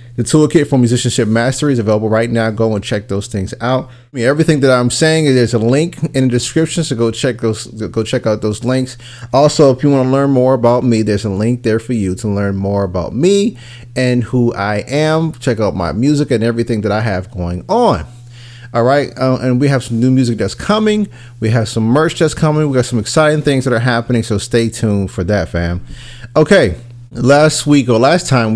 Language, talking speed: English, 225 wpm